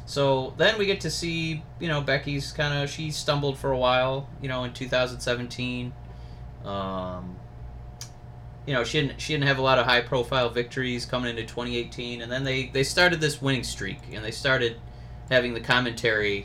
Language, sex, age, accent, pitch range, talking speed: English, male, 30-49, American, 110-135 Hz, 185 wpm